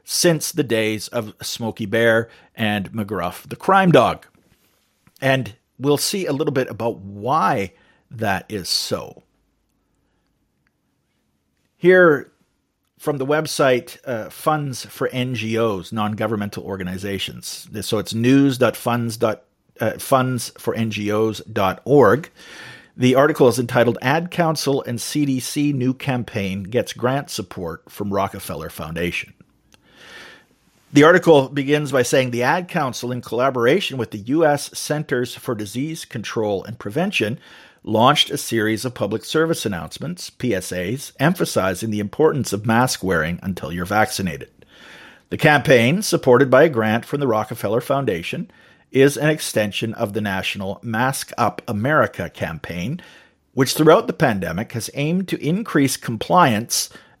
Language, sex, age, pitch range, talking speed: English, male, 40-59, 105-140 Hz, 125 wpm